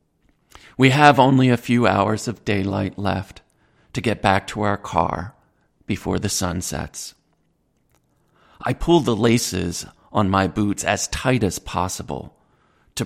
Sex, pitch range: male, 95-115 Hz